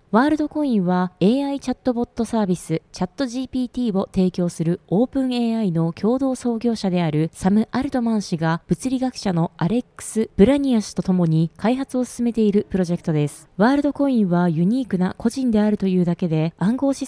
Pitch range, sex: 180-250 Hz, female